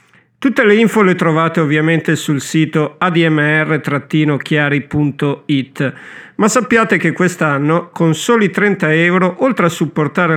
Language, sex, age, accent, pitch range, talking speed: Italian, male, 50-69, native, 150-195 Hz, 115 wpm